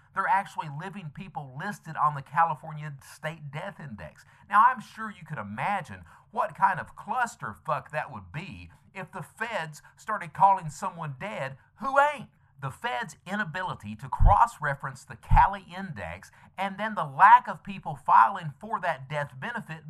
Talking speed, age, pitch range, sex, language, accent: 155 wpm, 50-69, 130-200 Hz, male, English, American